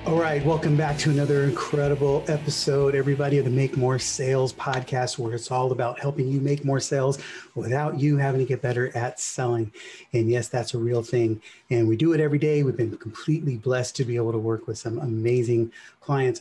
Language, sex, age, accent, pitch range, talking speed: English, male, 30-49, American, 115-140 Hz, 210 wpm